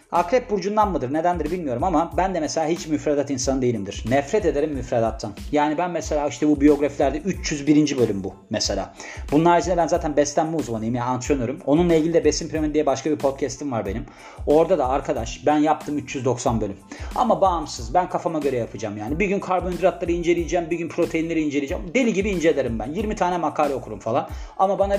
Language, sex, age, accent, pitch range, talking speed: Turkish, male, 40-59, native, 135-180 Hz, 185 wpm